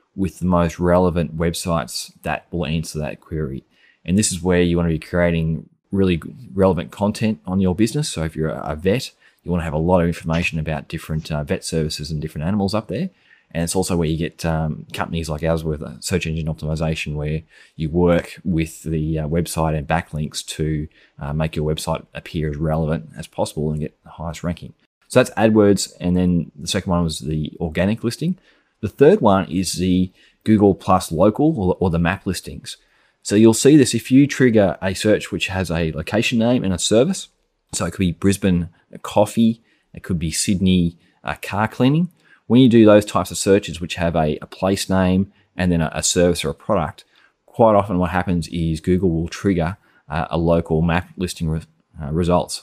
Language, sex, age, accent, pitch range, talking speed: English, male, 20-39, Australian, 80-95 Hz, 200 wpm